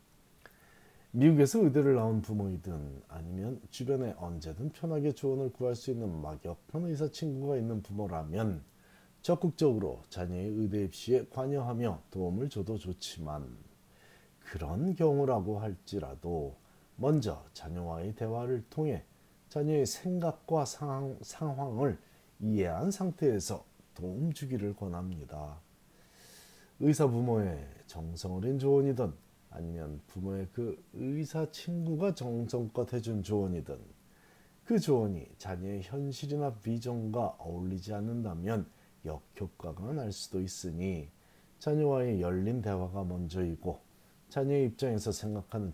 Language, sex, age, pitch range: Korean, male, 30-49, 95-135 Hz